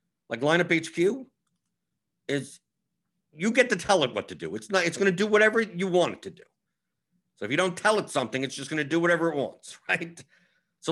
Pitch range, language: 120-170 Hz, English